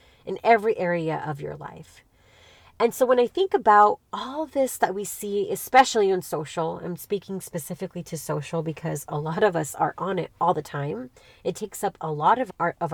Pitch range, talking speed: 170-230 Hz, 200 wpm